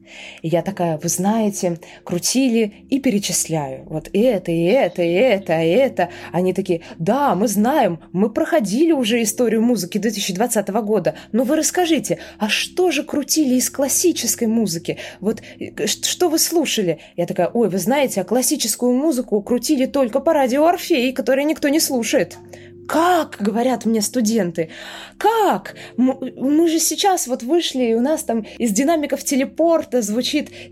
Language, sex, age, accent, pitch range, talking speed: Russian, female, 20-39, native, 195-270 Hz, 150 wpm